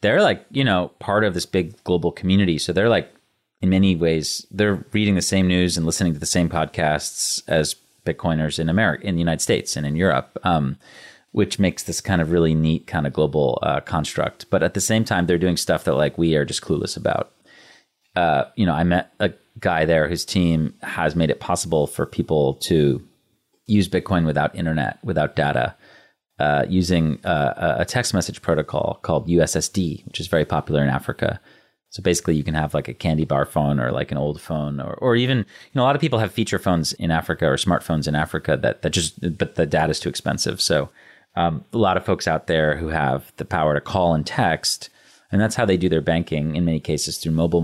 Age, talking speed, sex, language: 30-49, 220 wpm, male, English